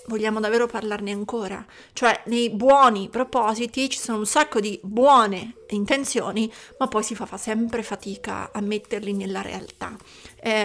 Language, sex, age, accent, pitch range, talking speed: Italian, female, 30-49, native, 210-255 Hz, 150 wpm